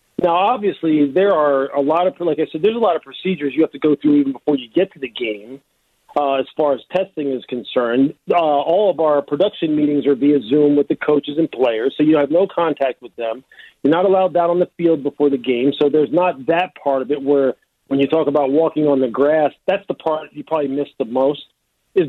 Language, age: English, 40-59